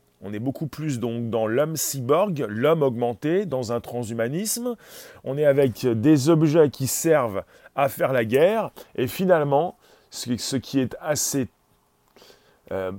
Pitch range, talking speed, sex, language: 125-175 Hz, 140 wpm, male, French